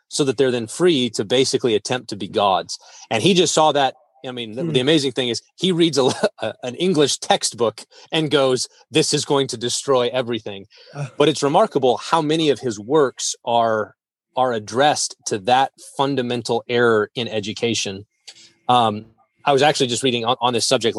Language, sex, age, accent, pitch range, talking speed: English, male, 30-49, American, 110-140 Hz, 185 wpm